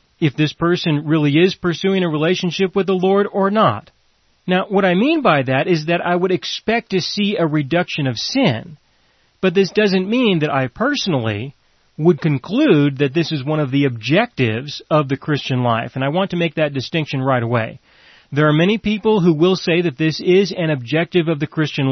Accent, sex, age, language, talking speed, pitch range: American, male, 40-59, English, 205 wpm, 140-180 Hz